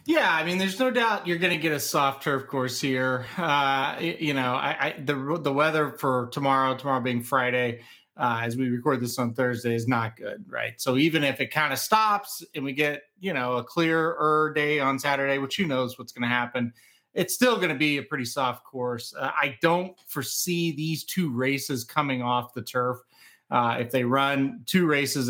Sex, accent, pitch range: male, American, 125-150 Hz